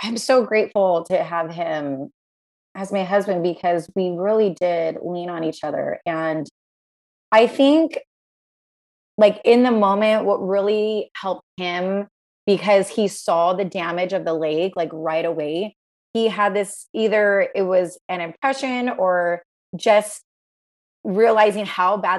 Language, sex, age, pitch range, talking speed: English, female, 20-39, 175-215 Hz, 140 wpm